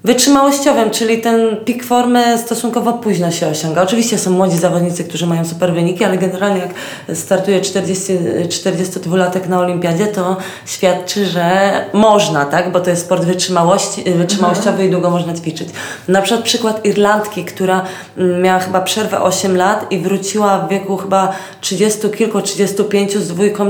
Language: Polish